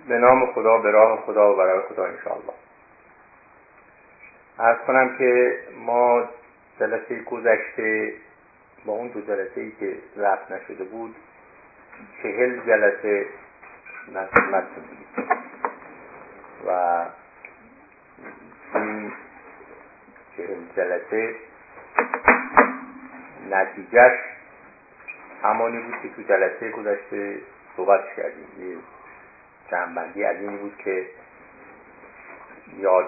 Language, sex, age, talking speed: Persian, male, 50-69, 80 wpm